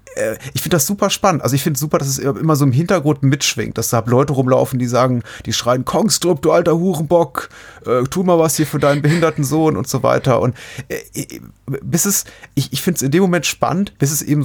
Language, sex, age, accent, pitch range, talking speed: German, male, 30-49, German, 115-140 Hz, 235 wpm